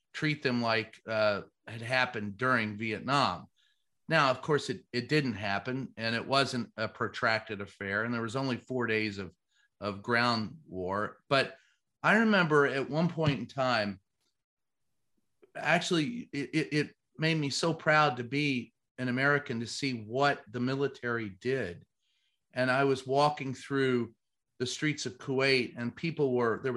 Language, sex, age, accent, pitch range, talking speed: English, male, 40-59, American, 120-145 Hz, 155 wpm